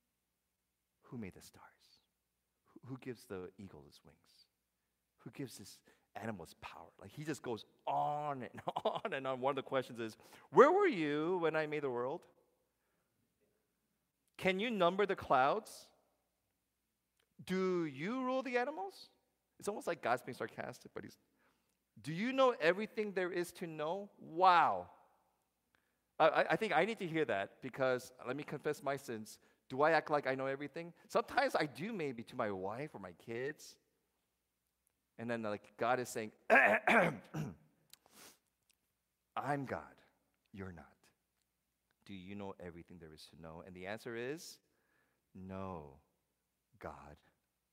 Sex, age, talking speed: male, 40-59, 150 wpm